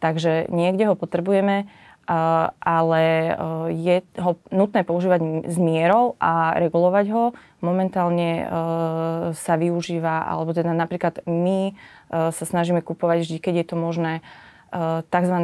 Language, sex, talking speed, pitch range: Slovak, female, 115 wpm, 165-185 Hz